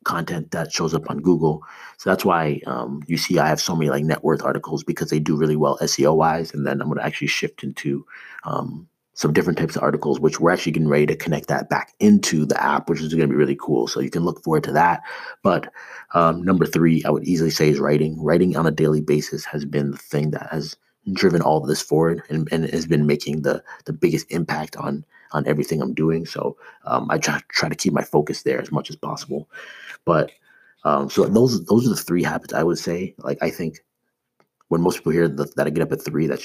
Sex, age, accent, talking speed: male, 30-49, American, 240 wpm